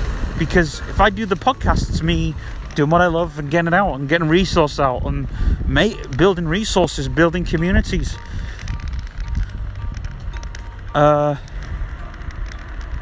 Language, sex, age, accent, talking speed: English, male, 30-49, British, 120 wpm